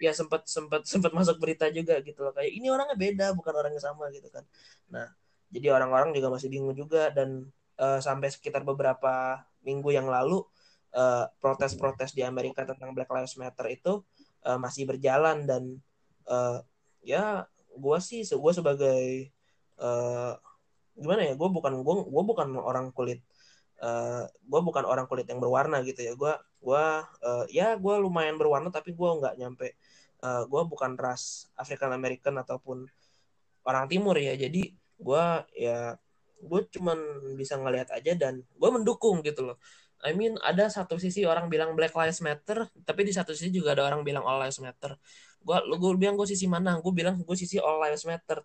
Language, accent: Indonesian, native